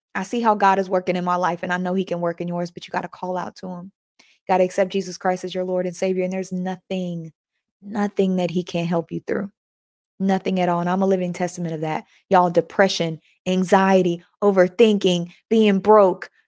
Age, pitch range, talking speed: 20-39, 175-200 Hz, 220 wpm